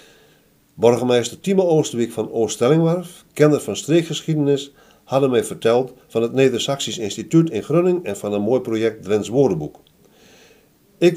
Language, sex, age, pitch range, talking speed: Dutch, male, 50-69, 120-160 Hz, 135 wpm